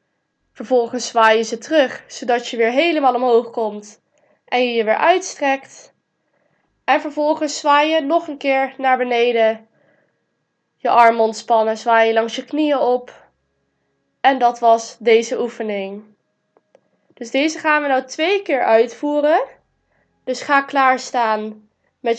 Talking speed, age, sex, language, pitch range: 140 wpm, 10-29, female, Dutch, 235-295 Hz